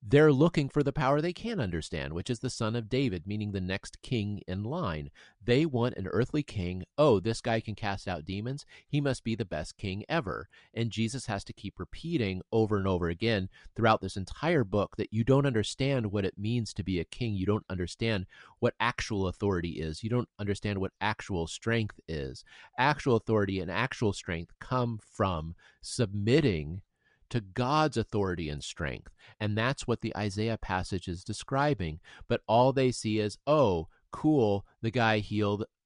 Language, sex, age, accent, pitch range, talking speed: English, male, 40-59, American, 95-125 Hz, 180 wpm